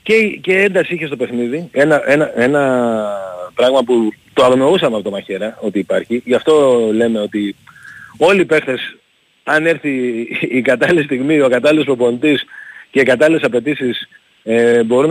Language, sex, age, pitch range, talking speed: Greek, male, 40-59, 125-170 Hz, 155 wpm